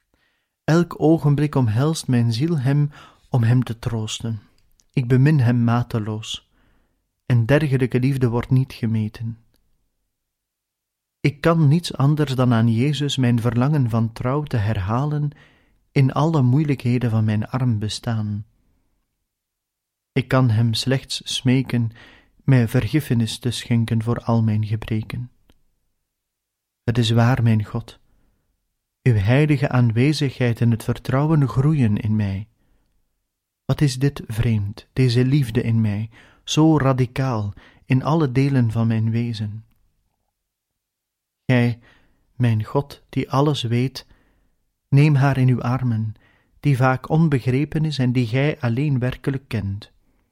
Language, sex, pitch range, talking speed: Dutch, male, 110-135 Hz, 125 wpm